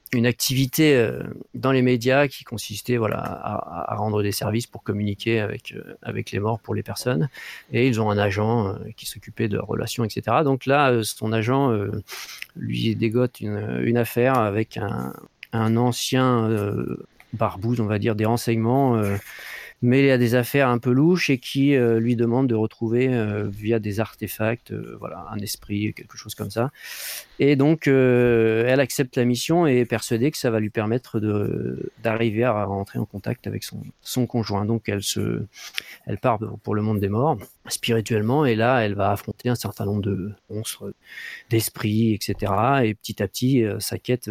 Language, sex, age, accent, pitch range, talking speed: French, male, 40-59, French, 105-125 Hz, 185 wpm